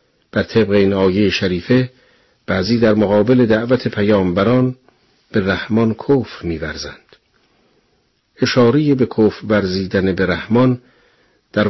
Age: 50-69